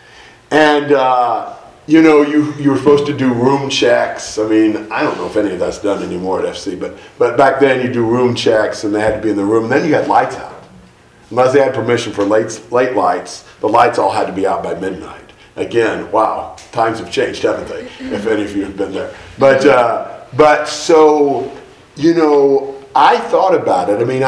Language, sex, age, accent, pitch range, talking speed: English, male, 50-69, American, 115-160 Hz, 220 wpm